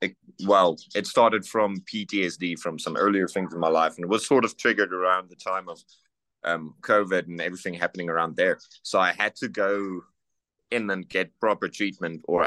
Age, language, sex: 30-49, English, male